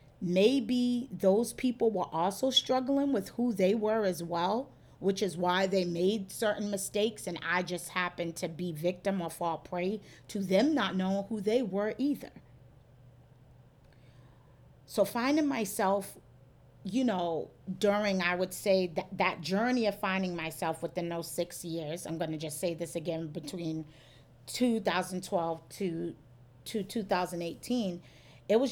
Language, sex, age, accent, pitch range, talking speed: English, female, 40-59, American, 155-200 Hz, 135 wpm